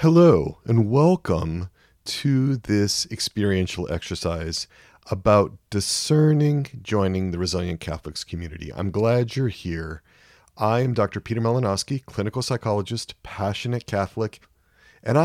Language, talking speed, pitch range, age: English, 105 wpm, 90-125 Hz, 40-59